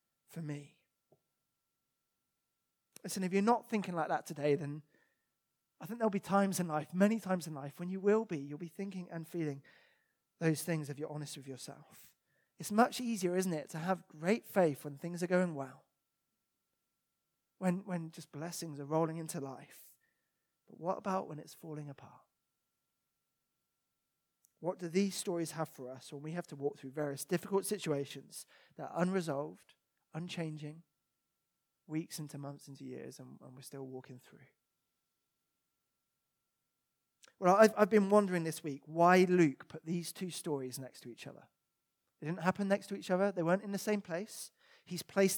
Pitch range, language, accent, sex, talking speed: 155-195 Hz, English, British, male, 170 wpm